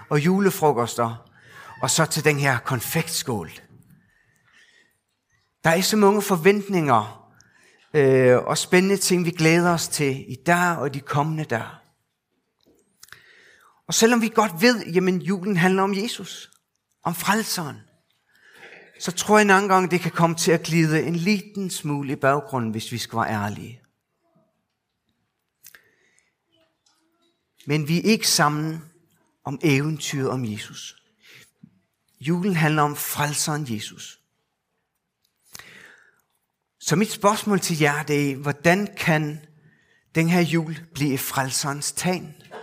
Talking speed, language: 125 wpm, Danish